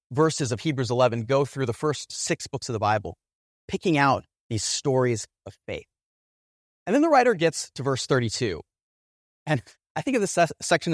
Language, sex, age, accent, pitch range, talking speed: English, male, 30-49, American, 125-195 Hz, 180 wpm